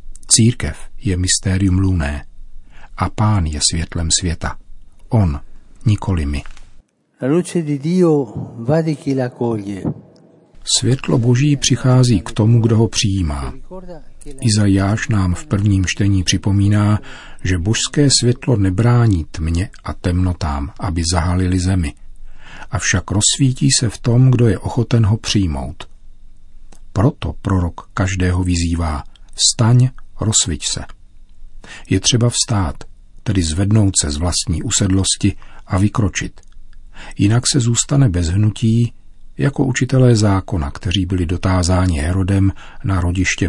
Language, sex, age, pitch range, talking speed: Czech, male, 50-69, 90-115 Hz, 110 wpm